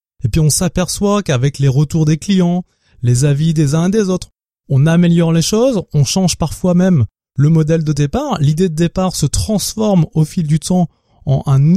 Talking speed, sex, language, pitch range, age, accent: 200 wpm, male, French, 135-190 Hz, 20-39, French